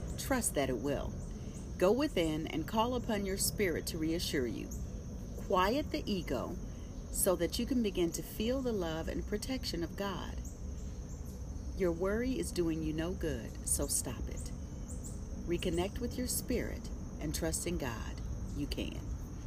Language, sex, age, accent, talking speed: English, female, 40-59, American, 155 wpm